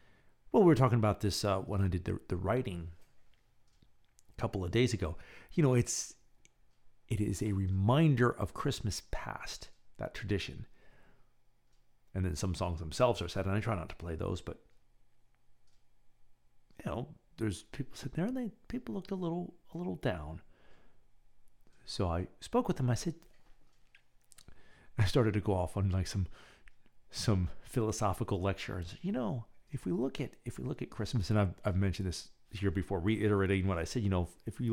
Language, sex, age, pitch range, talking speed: English, male, 40-59, 90-120 Hz, 180 wpm